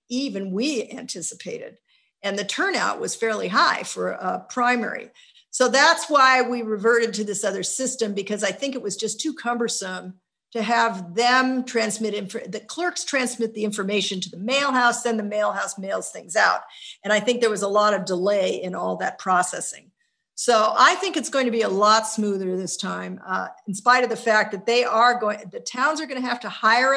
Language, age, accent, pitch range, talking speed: English, 50-69, American, 210-260 Hz, 200 wpm